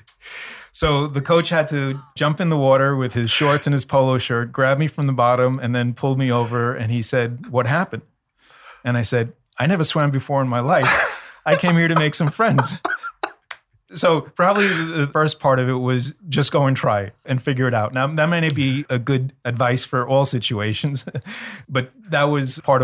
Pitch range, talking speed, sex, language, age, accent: 115-140 Hz, 210 wpm, male, English, 30-49, American